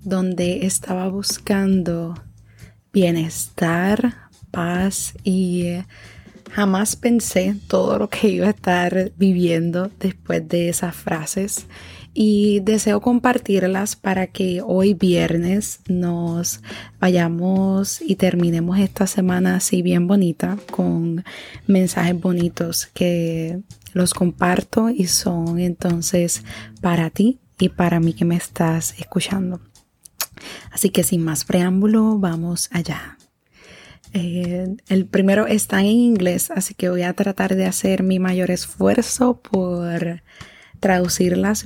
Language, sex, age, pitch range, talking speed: Spanish, female, 20-39, 170-195 Hz, 110 wpm